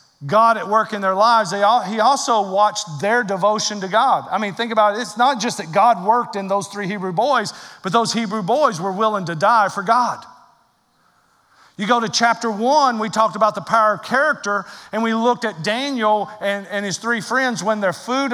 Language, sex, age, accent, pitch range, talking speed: English, male, 40-59, American, 200-255 Hz, 210 wpm